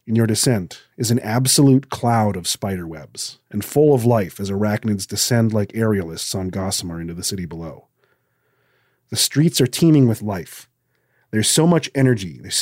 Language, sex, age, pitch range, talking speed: English, male, 30-49, 105-130 Hz, 165 wpm